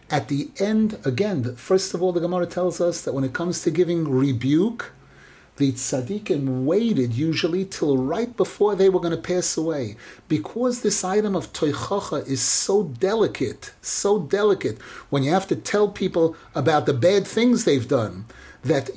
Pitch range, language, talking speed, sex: 150-200 Hz, English, 170 wpm, male